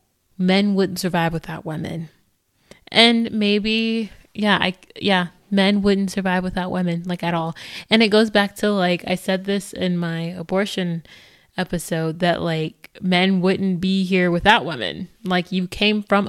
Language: English